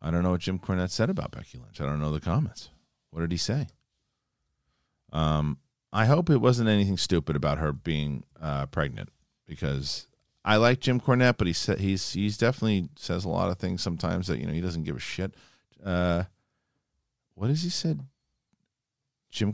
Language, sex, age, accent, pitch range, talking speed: English, male, 40-59, American, 80-120 Hz, 190 wpm